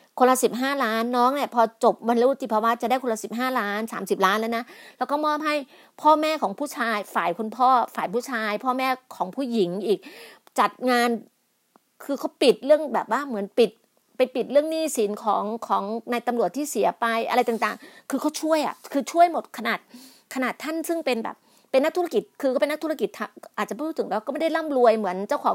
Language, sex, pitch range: Thai, female, 220-290 Hz